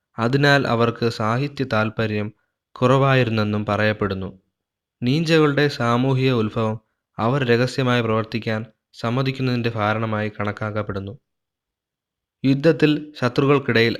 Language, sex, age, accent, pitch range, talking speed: Malayalam, male, 20-39, native, 105-125 Hz, 75 wpm